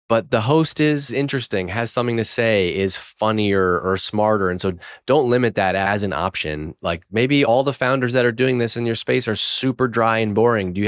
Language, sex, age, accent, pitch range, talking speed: English, male, 20-39, American, 95-115 Hz, 220 wpm